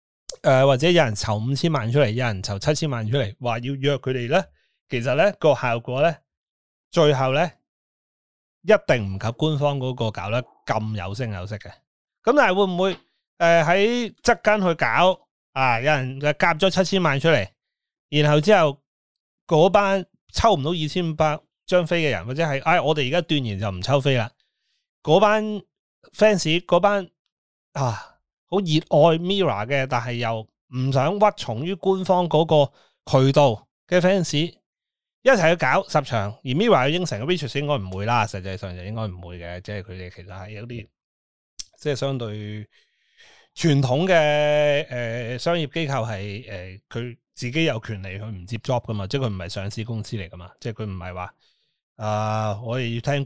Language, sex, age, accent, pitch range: Chinese, male, 30-49, native, 110-165 Hz